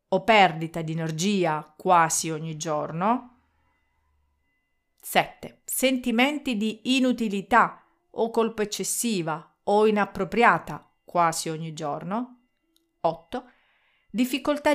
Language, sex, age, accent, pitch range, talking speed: Italian, female, 40-59, native, 165-230 Hz, 85 wpm